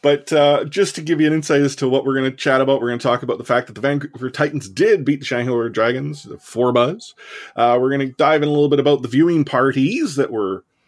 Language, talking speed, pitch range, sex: English, 270 wpm, 120-150 Hz, male